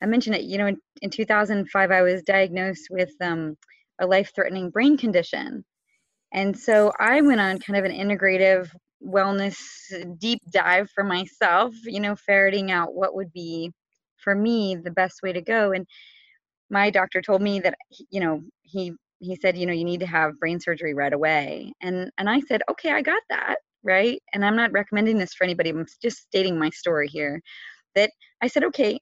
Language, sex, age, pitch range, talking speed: English, female, 20-39, 185-220 Hz, 190 wpm